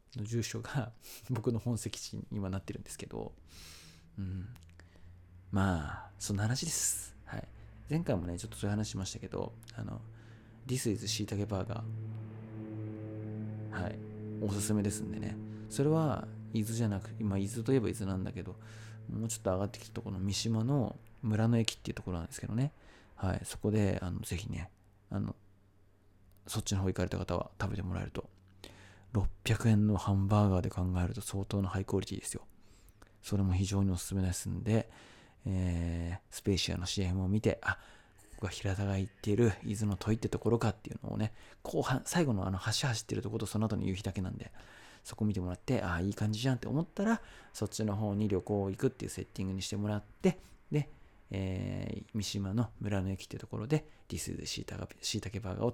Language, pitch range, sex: Japanese, 95-110 Hz, male